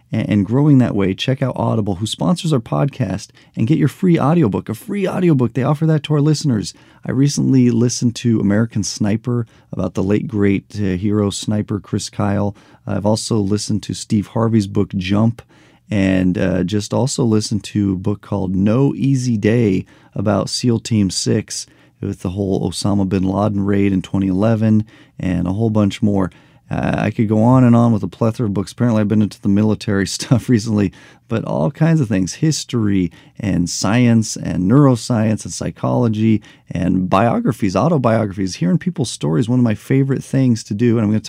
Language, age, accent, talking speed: English, 40-59, American, 185 wpm